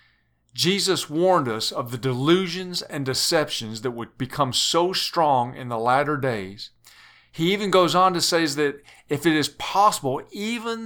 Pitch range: 130-170 Hz